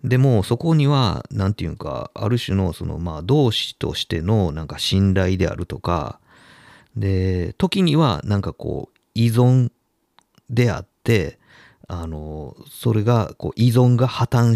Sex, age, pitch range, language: male, 40-59, 85-120 Hz, Japanese